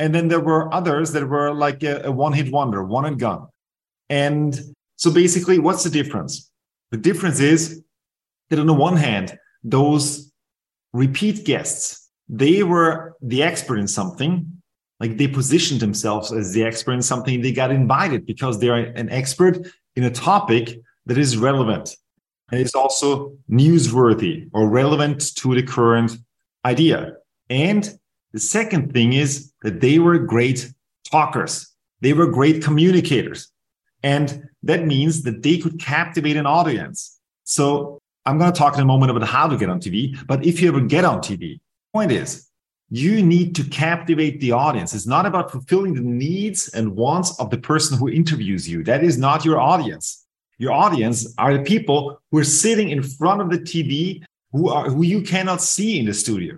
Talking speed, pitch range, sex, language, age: 175 wpm, 125-165 Hz, male, English, 40-59